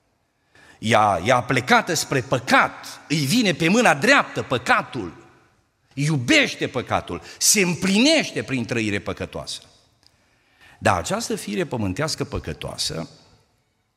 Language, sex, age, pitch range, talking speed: Romanian, male, 50-69, 110-170 Hz, 105 wpm